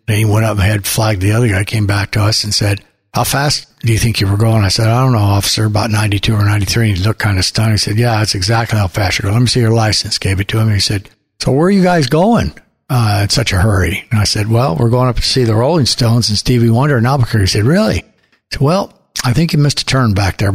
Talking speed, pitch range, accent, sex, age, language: 295 wpm, 105-125 Hz, American, male, 60-79, English